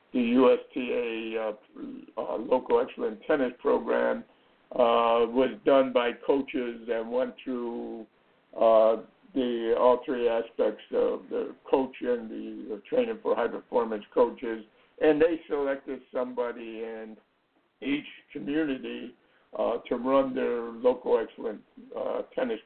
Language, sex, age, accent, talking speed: English, male, 60-79, American, 120 wpm